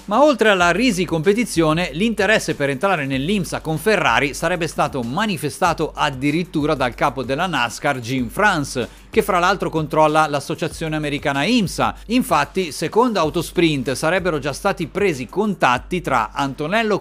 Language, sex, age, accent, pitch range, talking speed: Italian, male, 40-59, native, 145-200 Hz, 135 wpm